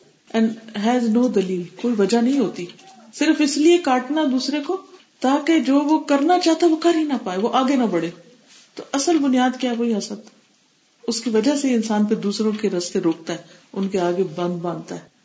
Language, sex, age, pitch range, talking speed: Urdu, female, 50-69, 190-250 Hz, 200 wpm